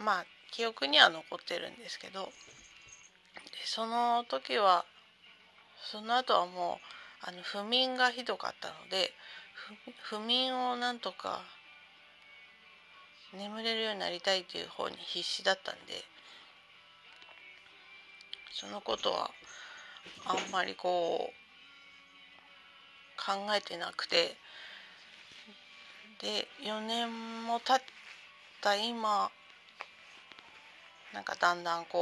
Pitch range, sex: 185-240 Hz, female